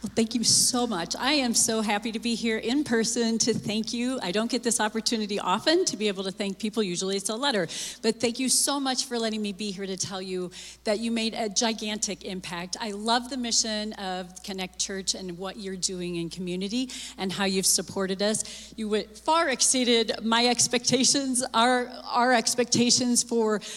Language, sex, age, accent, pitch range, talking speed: English, female, 40-59, American, 185-230 Hz, 200 wpm